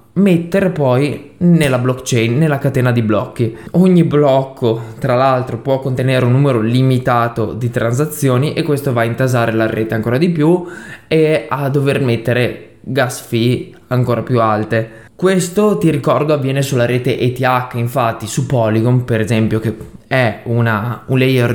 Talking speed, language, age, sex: 150 wpm, Italian, 20-39, male